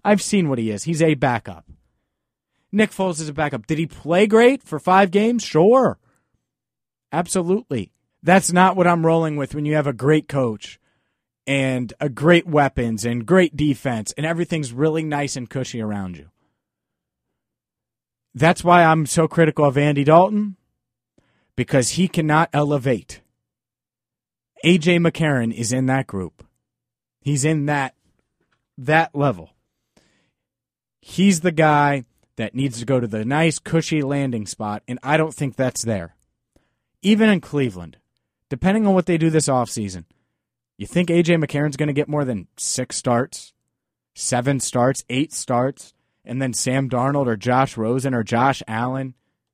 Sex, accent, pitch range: male, American, 120-165 Hz